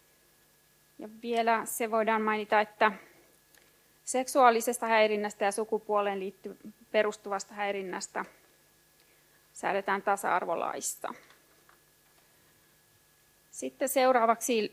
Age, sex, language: 30-49, female, Finnish